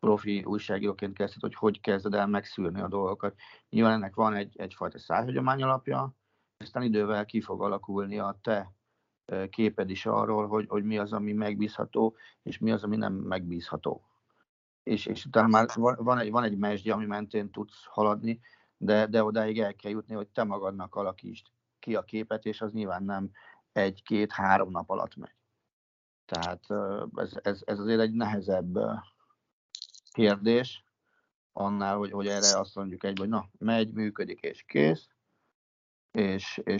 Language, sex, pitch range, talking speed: Hungarian, male, 100-110 Hz, 155 wpm